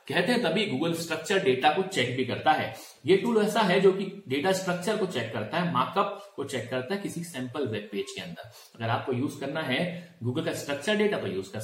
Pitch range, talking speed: 130-190 Hz, 235 wpm